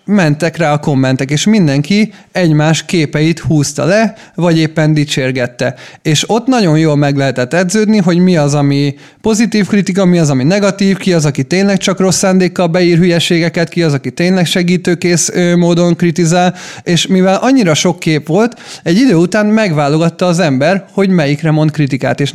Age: 30-49